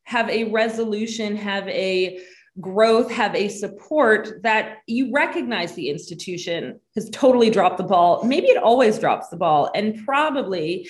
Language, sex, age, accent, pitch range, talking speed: English, female, 20-39, American, 195-255 Hz, 150 wpm